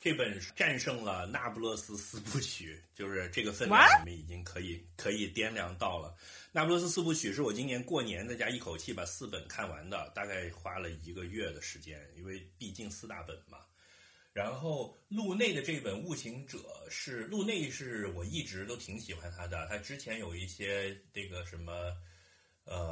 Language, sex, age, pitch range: Chinese, male, 30-49, 85-115 Hz